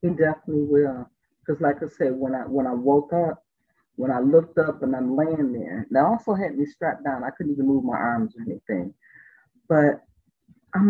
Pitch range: 140-200 Hz